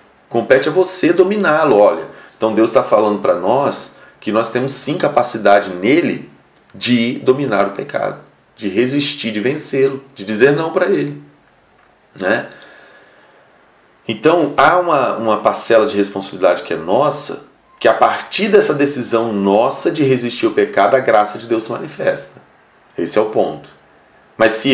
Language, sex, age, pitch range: Portuguese, male, 30-49, 100-145 Hz